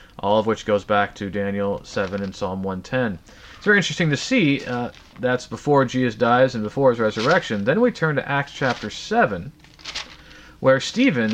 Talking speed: 180 wpm